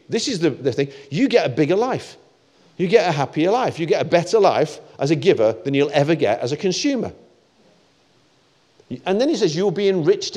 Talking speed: 215 wpm